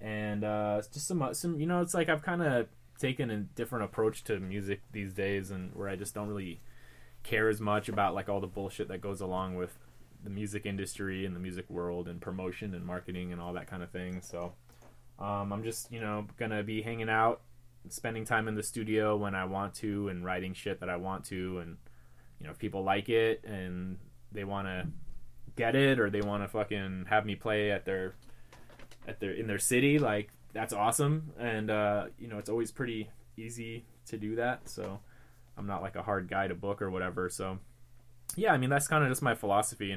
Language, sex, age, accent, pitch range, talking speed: English, male, 20-39, American, 95-115 Hz, 215 wpm